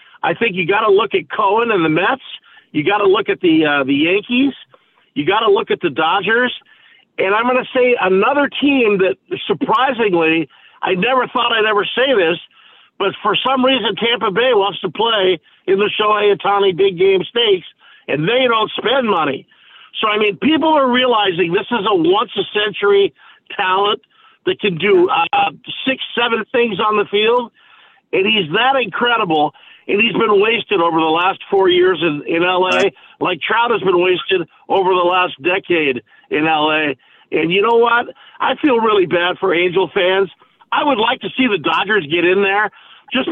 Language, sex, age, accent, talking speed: English, male, 50-69, American, 190 wpm